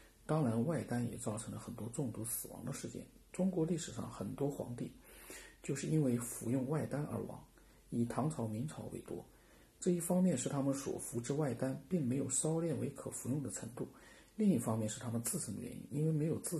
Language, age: Chinese, 50-69